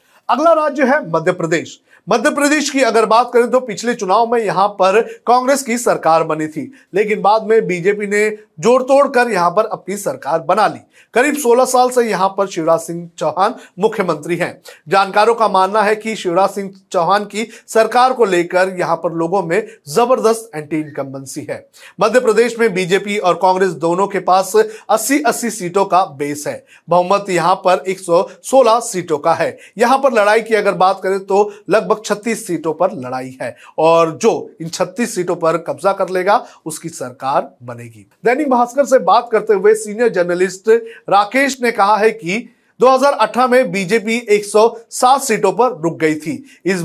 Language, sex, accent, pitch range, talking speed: Hindi, male, native, 175-230 Hz, 135 wpm